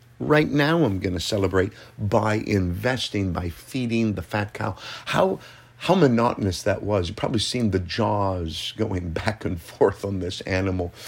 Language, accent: English, American